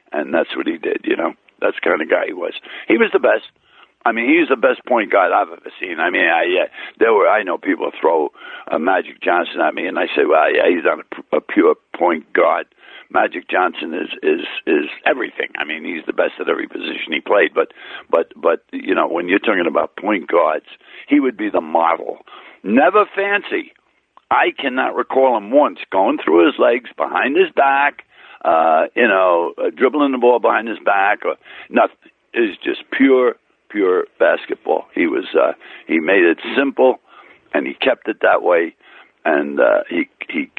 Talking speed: 205 wpm